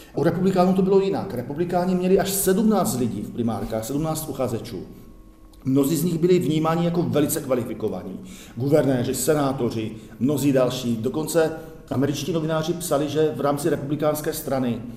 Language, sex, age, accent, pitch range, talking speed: Czech, male, 50-69, native, 130-160 Hz, 140 wpm